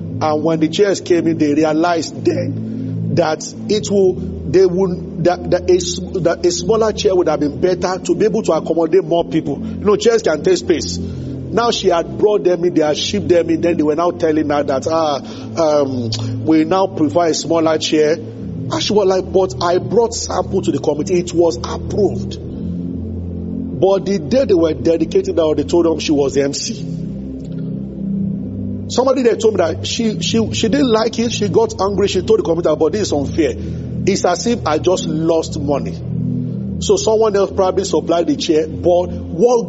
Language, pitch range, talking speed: English, 150-205 Hz, 195 wpm